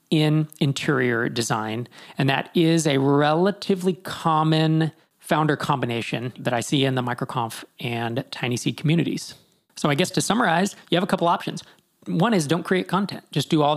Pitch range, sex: 135-165 Hz, male